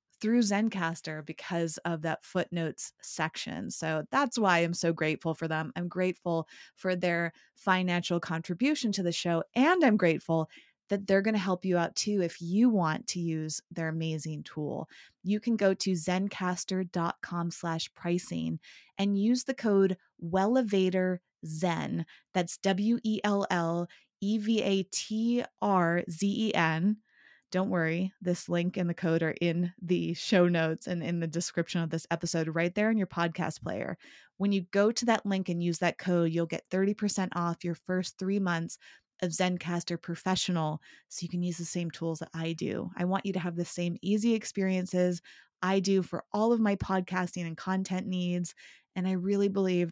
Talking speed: 160 wpm